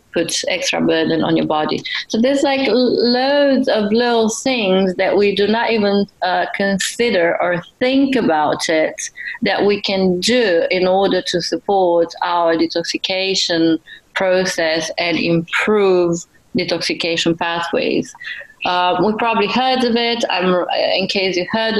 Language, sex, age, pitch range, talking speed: English, female, 30-49, 170-220 Hz, 140 wpm